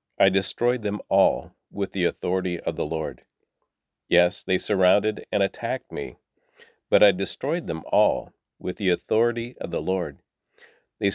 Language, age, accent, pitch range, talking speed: English, 40-59, American, 95-115 Hz, 150 wpm